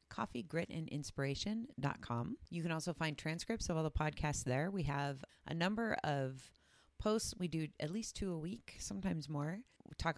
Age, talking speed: 30-49, 165 wpm